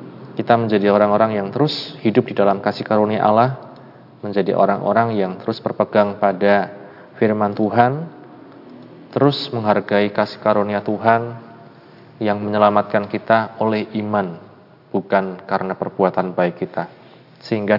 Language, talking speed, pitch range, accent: Indonesian, 120 wpm, 100-115 Hz, native